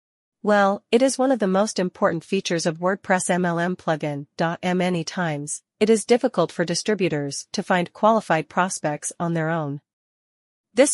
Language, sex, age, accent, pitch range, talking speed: English, female, 40-59, American, 165-200 Hz, 145 wpm